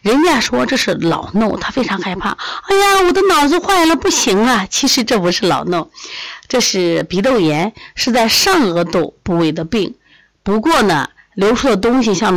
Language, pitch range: Chinese, 180-280 Hz